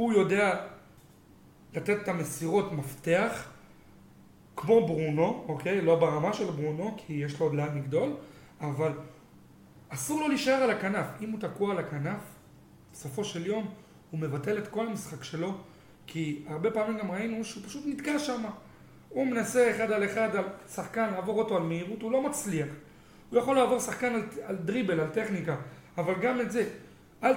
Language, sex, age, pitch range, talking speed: Hebrew, male, 30-49, 165-220 Hz, 165 wpm